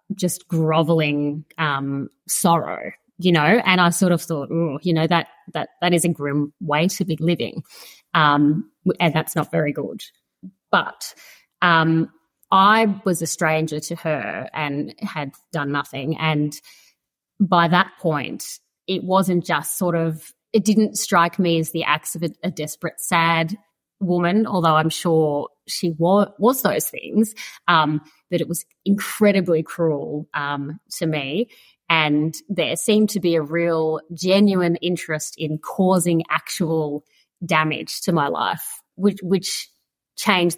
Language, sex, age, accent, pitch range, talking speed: English, female, 30-49, Australian, 155-185 Hz, 150 wpm